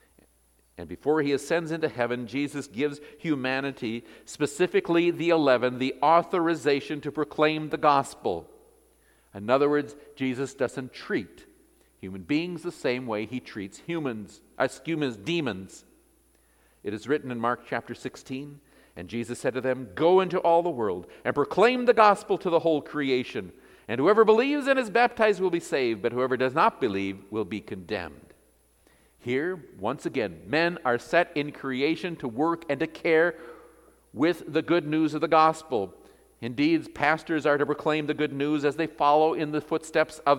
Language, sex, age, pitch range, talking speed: English, male, 50-69, 115-160 Hz, 165 wpm